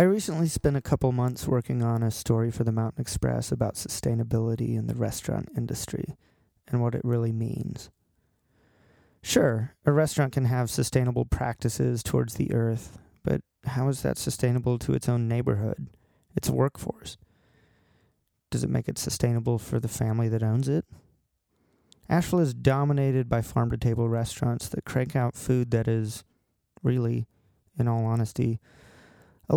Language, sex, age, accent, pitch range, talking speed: English, male, 30-49, American, 115-130 Hz, 150 wpm